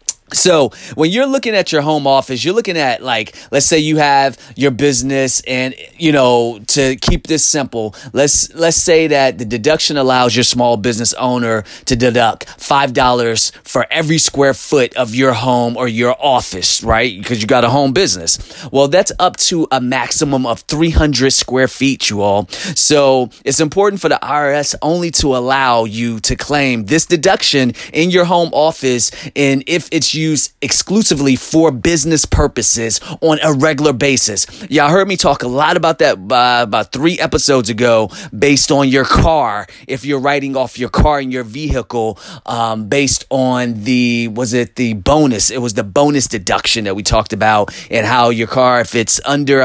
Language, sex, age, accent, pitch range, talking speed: English, male, 30-49, American, 120-150 Hz, 180 wpm